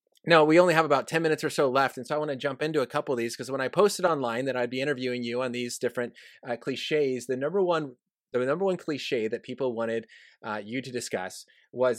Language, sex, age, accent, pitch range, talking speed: English, male, 30-49, American, 120-165 Hz, 255 wpm